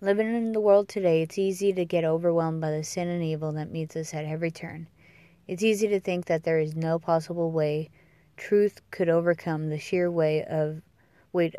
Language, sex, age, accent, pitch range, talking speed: English, female, 20-39, American, 160-180 Hz, 190 wpm